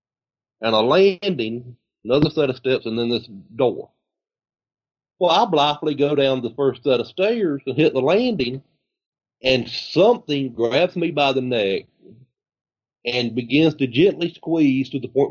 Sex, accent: male, American